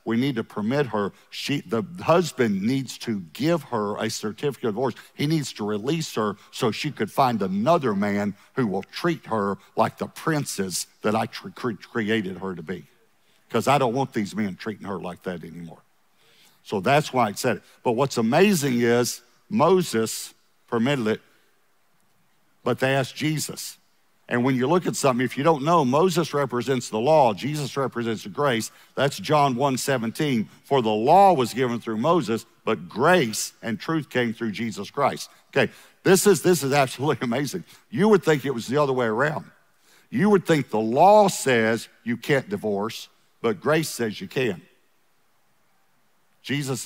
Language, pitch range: English, 115-155 Hz